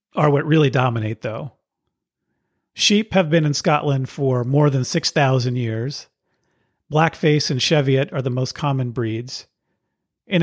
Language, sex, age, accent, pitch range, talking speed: English, male, 40-59, American, 130-165 Hz, 140 wpm